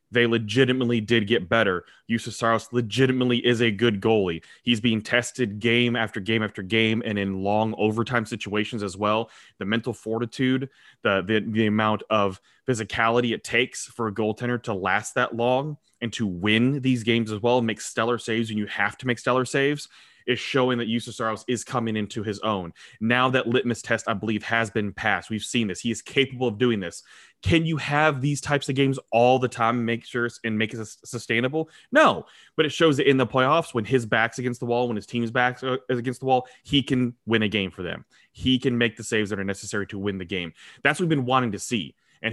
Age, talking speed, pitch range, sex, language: 20-39, 220 wpm, 110-125 Hz, male, English